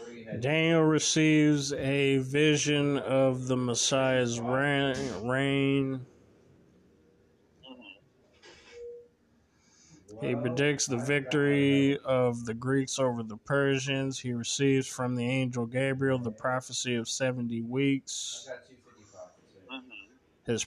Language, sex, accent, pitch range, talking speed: English, male, American, 120-140 Hz, 85 wpm